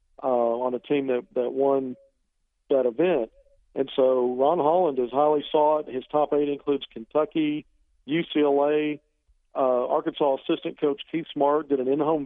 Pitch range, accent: 130-150 Hz, American